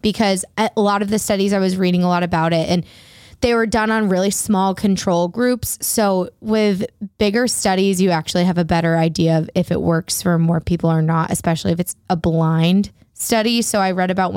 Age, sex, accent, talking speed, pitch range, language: 20-39, female, American, 215 wpm, 180-220 Hz, English